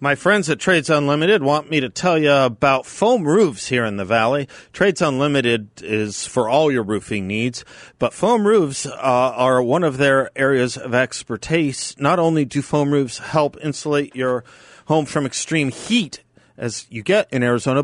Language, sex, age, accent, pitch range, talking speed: English, male, 40-59, American, 115-155 Hz, 180 wpm